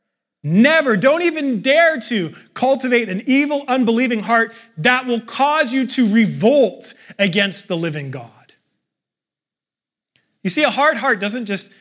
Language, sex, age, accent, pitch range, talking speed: English, male, 30-49, American, 185-245 Hz, 135 wpm